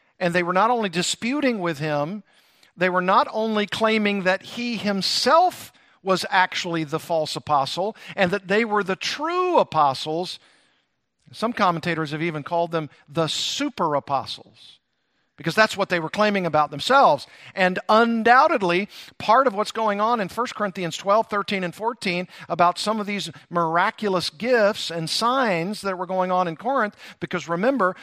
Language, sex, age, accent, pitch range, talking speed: English, male, 50-69, American, 160-205 Hz, 160 wpm